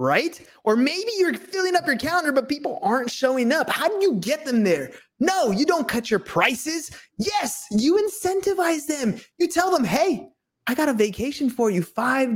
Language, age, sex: English, 20-39, male